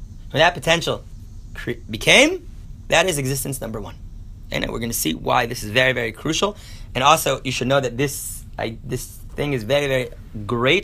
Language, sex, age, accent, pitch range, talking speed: English, male, 30-49, American, 105-140 Hz, 195 wpm